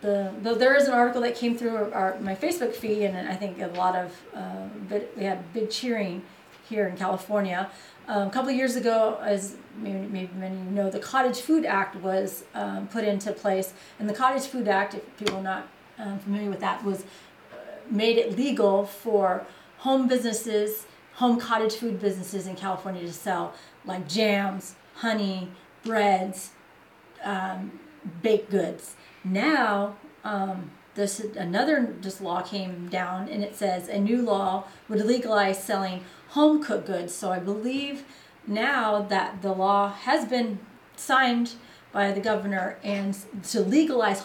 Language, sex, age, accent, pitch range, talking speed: English, female, 30-49, American, 190-230 Hz, 165 wpm